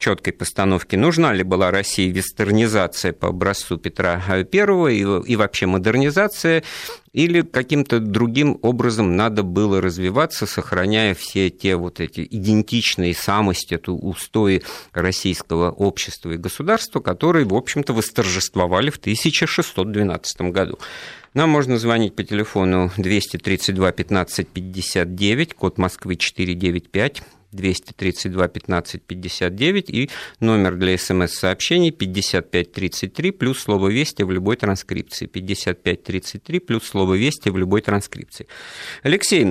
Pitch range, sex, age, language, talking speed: 95-125 Hz, male, 50-69, Russian, 115 wpm